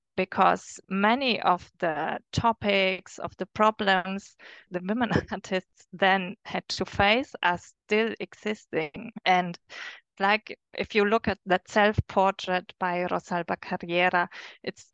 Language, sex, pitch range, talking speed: English, female, 180-215 Hz, 120 wpm